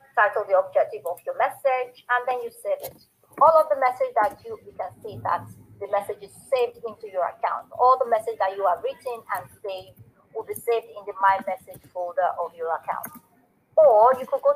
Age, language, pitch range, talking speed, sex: 30-49, English, 205-290 Hz, 215 wpm, female